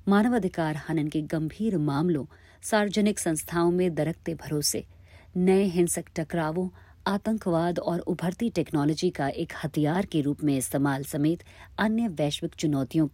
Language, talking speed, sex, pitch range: Hindi, 130 wpm, female, 140-185 Hz